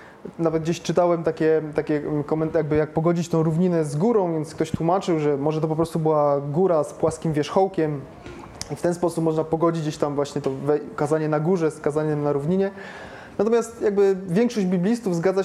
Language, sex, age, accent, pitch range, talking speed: Polish, male, 20-39, native, 155-180 Hz, 185 wpm